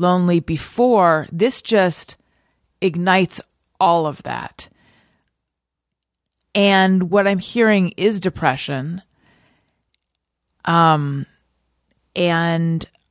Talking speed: 75 wpm